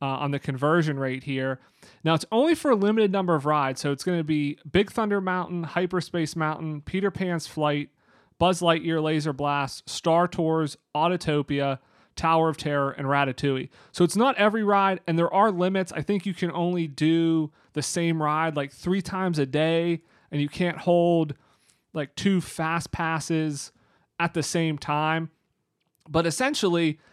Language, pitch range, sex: English, 145-175 Hz, male